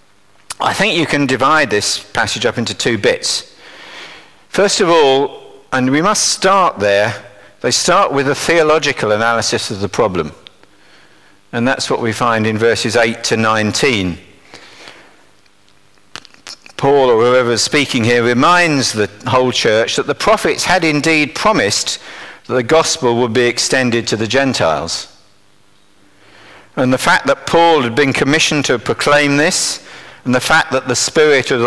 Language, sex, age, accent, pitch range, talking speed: English, male, 50-69, British, 100-150 Hz, 155 wpm